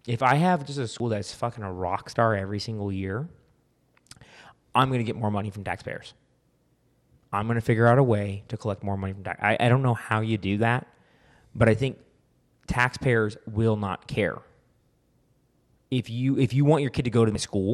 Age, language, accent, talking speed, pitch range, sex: 20-39, English, American, 210 wpm, 105-130 Hz, male